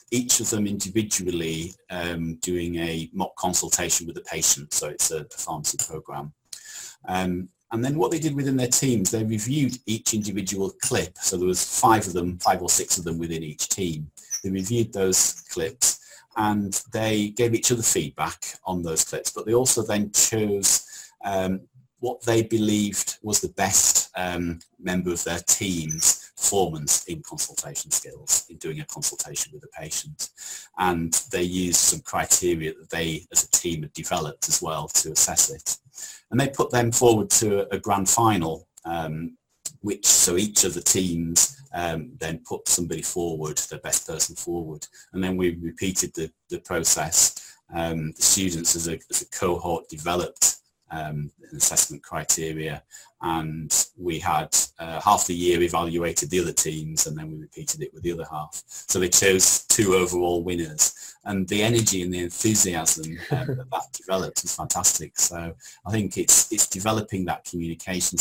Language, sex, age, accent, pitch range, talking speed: English, male, 40-59, British, 85-110 Hz, 170 wpm